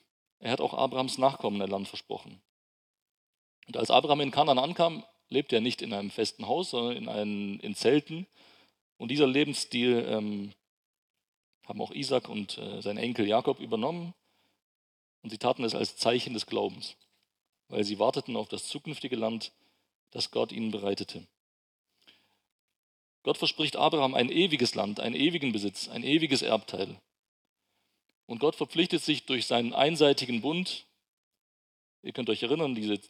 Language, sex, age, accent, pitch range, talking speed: German, male, 40-59, German, 110-150 Hz, 150 wpm